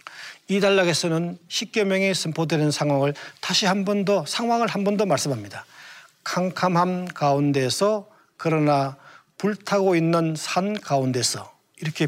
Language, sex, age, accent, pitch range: Korean, male, 40-59, native, 140-185 Hz